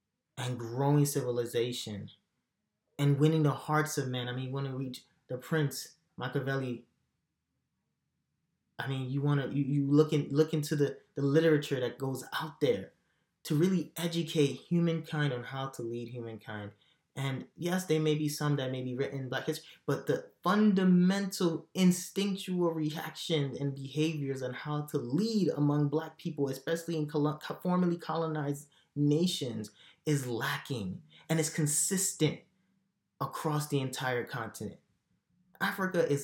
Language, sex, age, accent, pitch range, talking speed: English, male, 20-39, American, 135-165 Hz, 145 wpm